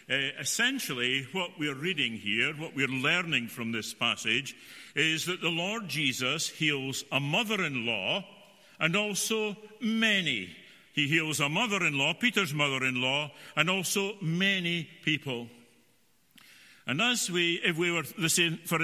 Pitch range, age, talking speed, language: 150-195 Hz, 60-79, 125 wpm, English